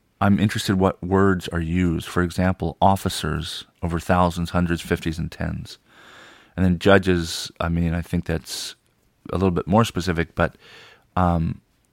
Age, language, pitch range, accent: 40-59, English, 85-95 Hz, American